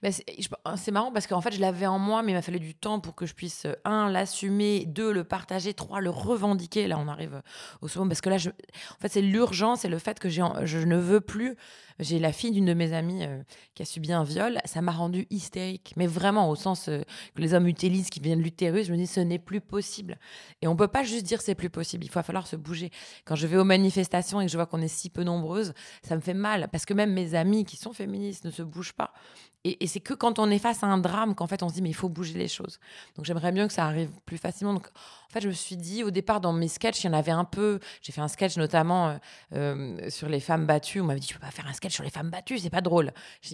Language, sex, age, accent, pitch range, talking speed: French, female, 20-39, French, 160-200 Hz, 290 wpm